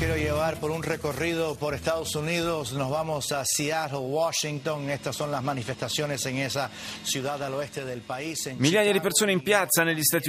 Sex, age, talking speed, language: male, 30-49, 170 wpm, Italian